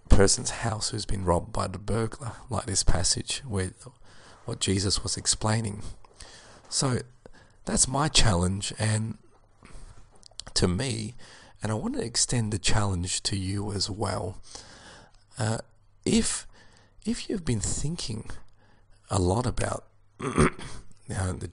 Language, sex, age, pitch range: English, male, 40-59, 95-110 Hz